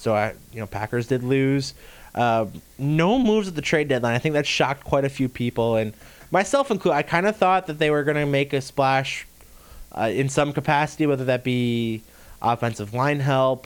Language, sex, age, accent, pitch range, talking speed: English, male, 20-39, American, 115-145 Hz, 205 wpm